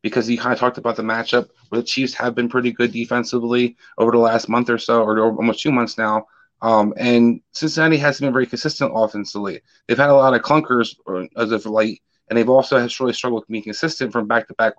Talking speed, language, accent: 225 wpm, English, American